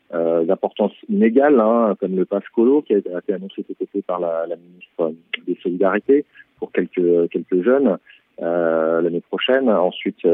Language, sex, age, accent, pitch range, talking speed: French, male, 40-59, French, 95-125 Hz, 155 wpm